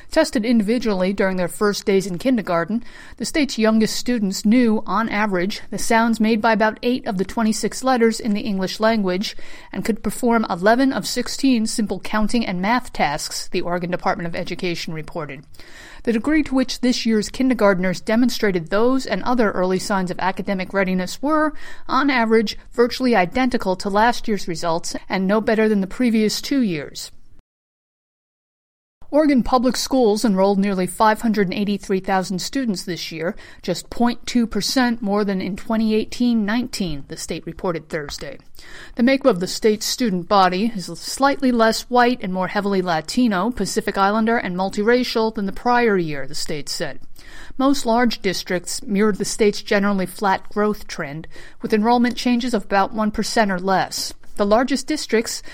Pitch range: 190-240 Hz